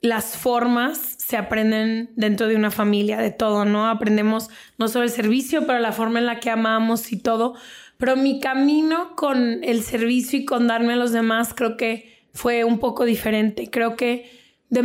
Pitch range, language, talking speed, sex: 225-245 Hz, Spanish, 185 wpm, female